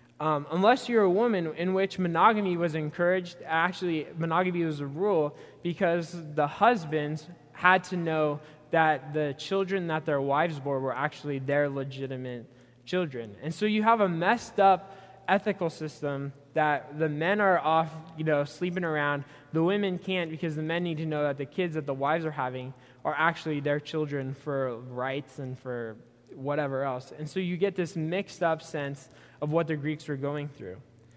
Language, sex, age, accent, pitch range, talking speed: English, male, 10-29, American, 145-185 Hz, 175 wpm